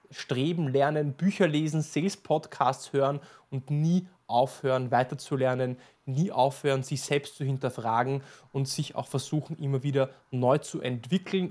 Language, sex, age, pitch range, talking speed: German, male, 20-39, 135-165 Hz, 130 wpm